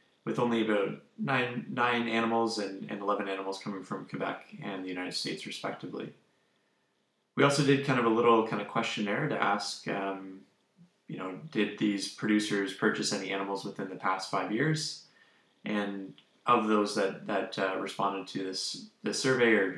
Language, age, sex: English, 20-39, male